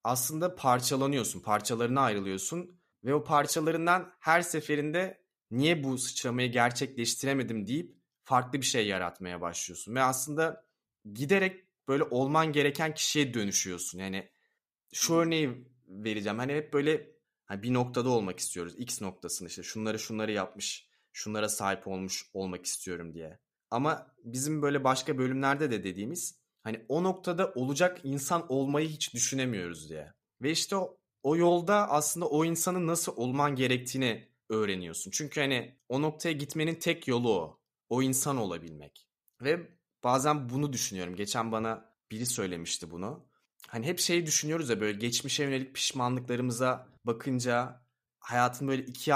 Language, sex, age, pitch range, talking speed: Turkish, male, 30-49, 110-150 Hz, 135 wpm